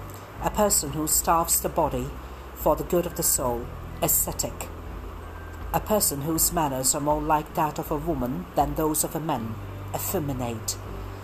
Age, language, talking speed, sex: 50-69, English, 160 wpm, female